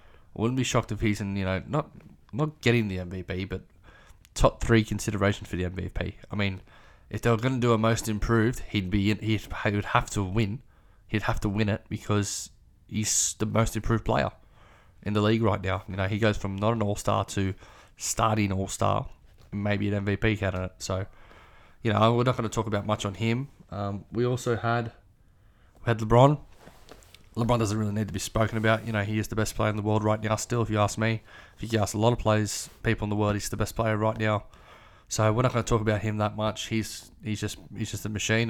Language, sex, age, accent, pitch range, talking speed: English, male, 20-39, Australian, 100-115 Hz, 235 wpm